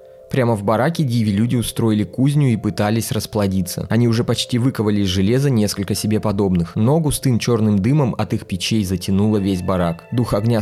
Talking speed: 170 wpm